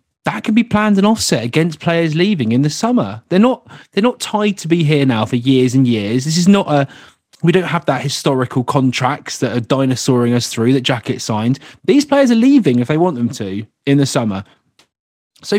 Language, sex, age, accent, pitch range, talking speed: English, male, 30-49, British, 130-195 Hz, 215 wpm